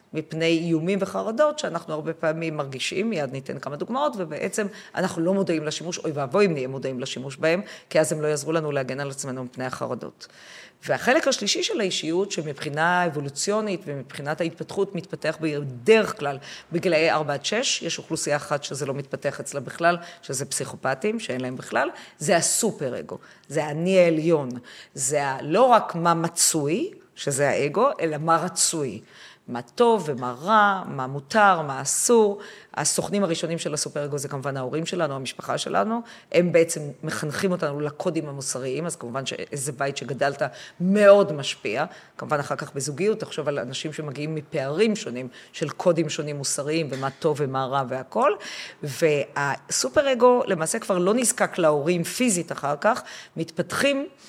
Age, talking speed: 40-59, 150 wpm